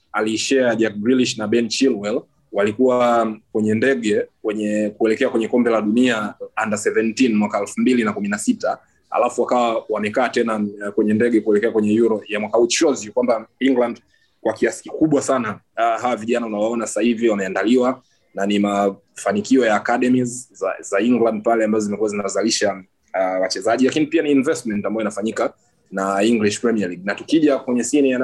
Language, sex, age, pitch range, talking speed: Swahili, male, 20-39, 105-125 Hz, 145 wpm